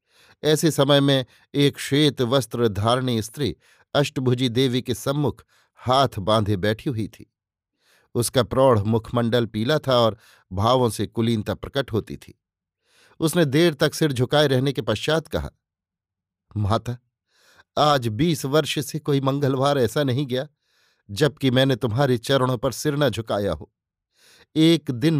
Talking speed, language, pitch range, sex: 140 wpm, Hindi, 120-150 Hz, male